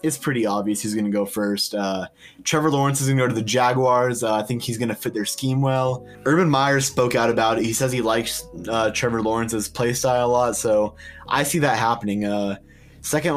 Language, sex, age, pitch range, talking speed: English, male, 20-39, 110-130 Hz, 235 wpm